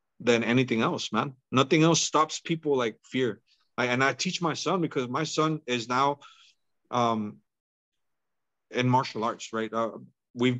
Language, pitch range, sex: English, 125-165 Hz, male